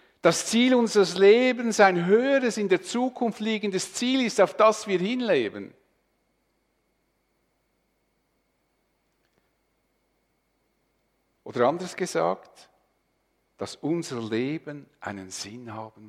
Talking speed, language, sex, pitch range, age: 95 wpm, German, male, 130-195 Hz, 50-69